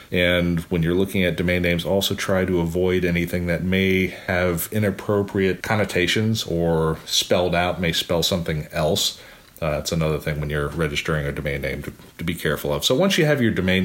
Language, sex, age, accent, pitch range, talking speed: English, male, 40-59, American, 80-95 Hz, 195 wpm